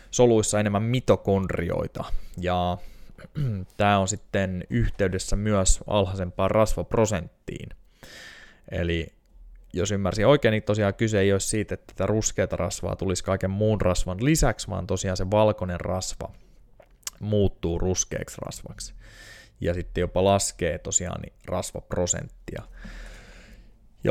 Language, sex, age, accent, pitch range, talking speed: Finnish, male, 20-39, native, 90-105 Hz, 110 wpm